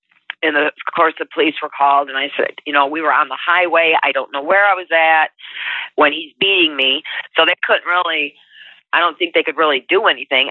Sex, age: female, 40-59